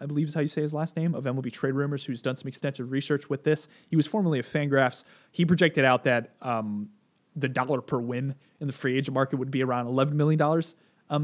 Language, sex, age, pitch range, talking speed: English, male, 20-39, 125-160 Hz, 245 wpm